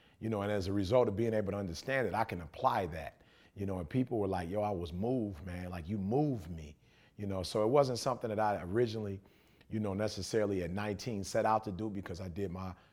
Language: English